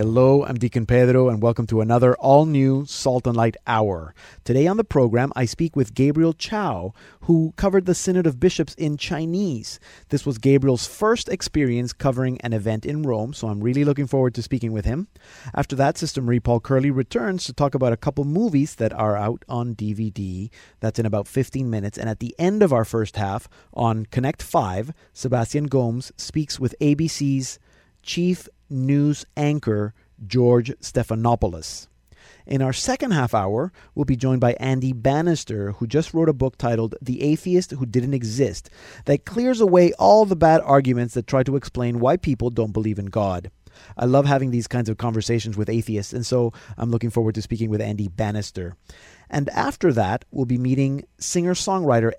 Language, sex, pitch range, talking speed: English, male, 115-145 Hz, 180 wpm